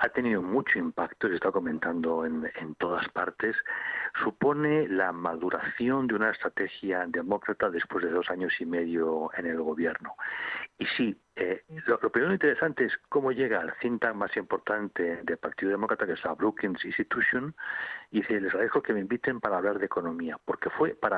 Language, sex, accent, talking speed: Spanish, male, Spanish, 180 wpm